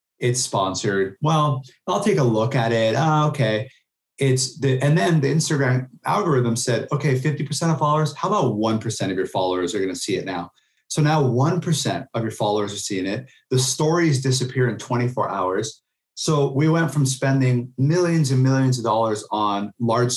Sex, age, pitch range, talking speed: male, 30-49, 115-140 Hz, 185 wpm